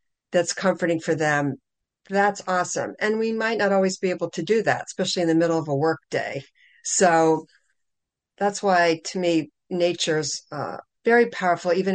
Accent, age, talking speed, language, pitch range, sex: American, 50-69, 170 wpm, English, 160-200 Hz, female